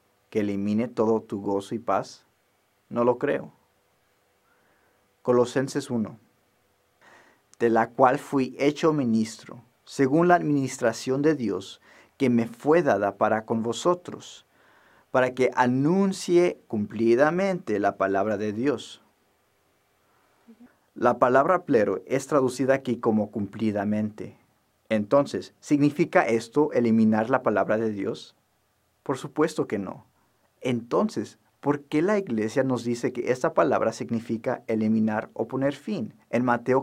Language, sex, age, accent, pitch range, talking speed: English, male, 40-59, Mexican, 110-140 Hz, 120 wpm